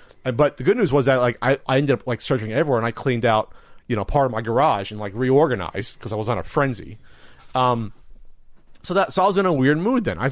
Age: 30-49